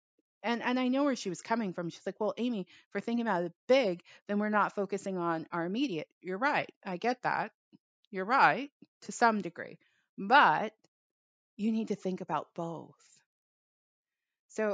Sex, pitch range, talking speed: female, 170-215 Hz, 180 wpm